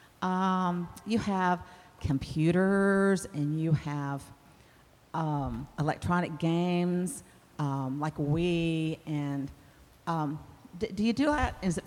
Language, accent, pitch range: English, American, 155-220 Hz